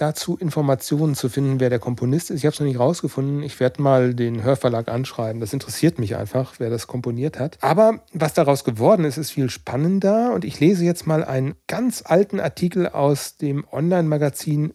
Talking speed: 195 wpm